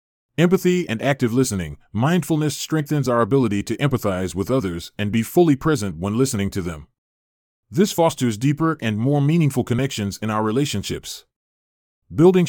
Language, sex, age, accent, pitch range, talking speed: English, male, 30-49, American, 100-140 Hz, 150 wpm